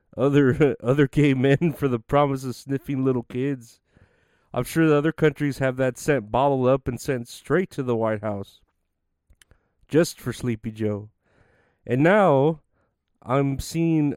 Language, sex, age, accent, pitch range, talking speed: English, male, 30-49, American, 115-140 Hz, 155 wpm